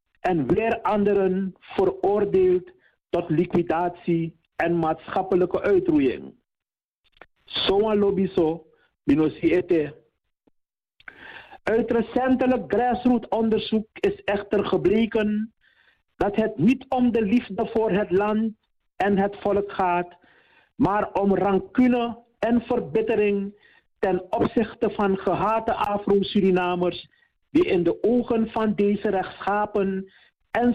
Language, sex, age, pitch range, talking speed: Dutch, male, 50-69, 180-230 Hz, 100 wpm